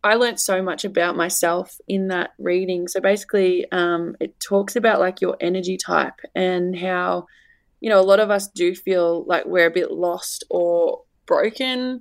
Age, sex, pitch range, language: 20-39, female, 170-200 Hz, English